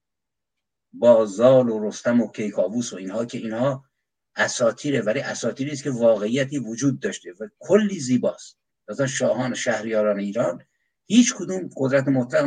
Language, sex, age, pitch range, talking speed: Persian, male, 60-79, 120-175 Hz, 135 wpm